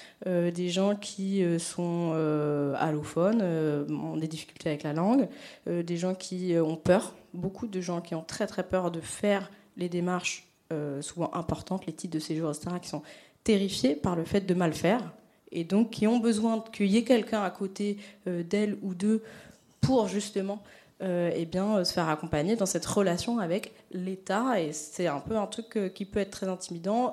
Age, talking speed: 20-39, 180 wpm